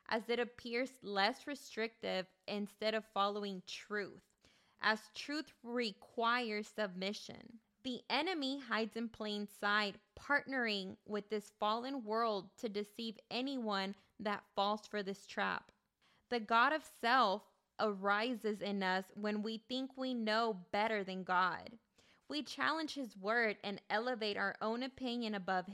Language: English